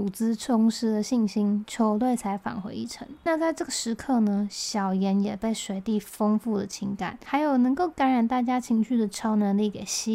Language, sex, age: Chinese, female, 20-39